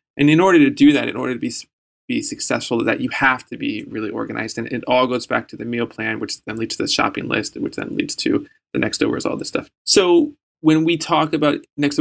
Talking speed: 255 wpm